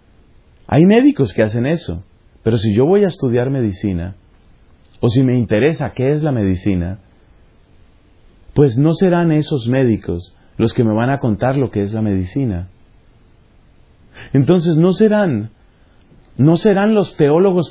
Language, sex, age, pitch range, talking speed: Spanish, male, 40-59, 105-170 Hz, 145 wpm